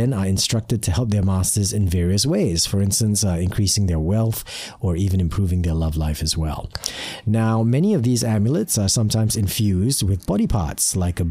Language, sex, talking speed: English, male, 190 wpm